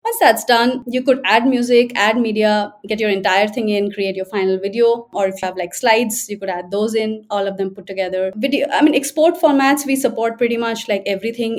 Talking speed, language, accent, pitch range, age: 235 wpm, English, Indian, 195-235 Hz, 20-39